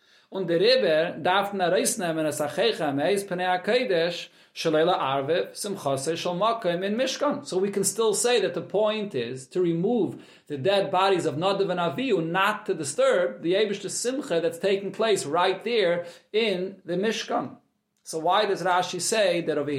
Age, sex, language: 40-59, male, English